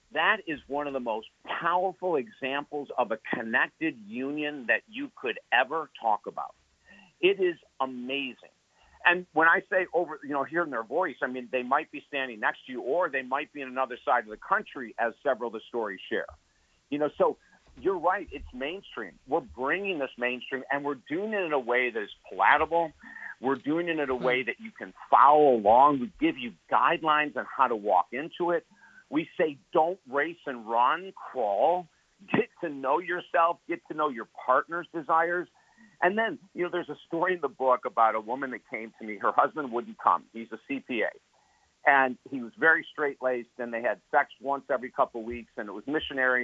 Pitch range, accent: 125-175 Hz, American